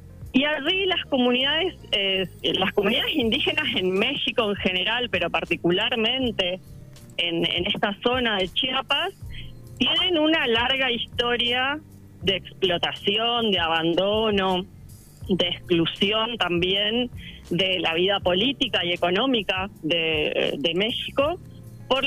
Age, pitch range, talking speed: 30-49, 185-250 Hz, 110 wpm